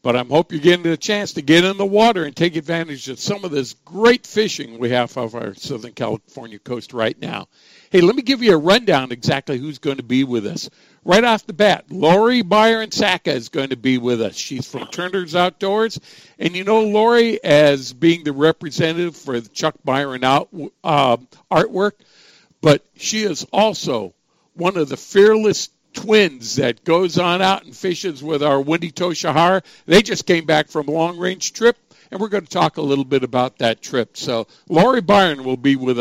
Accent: American